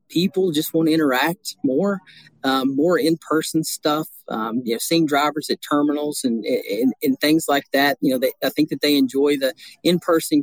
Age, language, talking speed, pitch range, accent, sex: 40-59, English, 190 wpm, 140-170 Hz, American, male